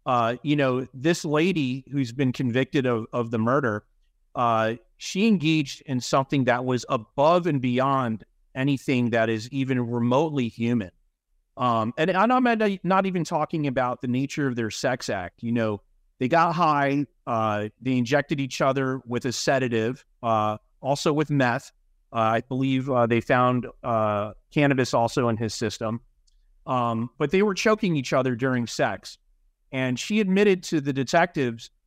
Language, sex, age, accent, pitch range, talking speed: English, male, 30-49, American, 115-150 Hz, 160 wpm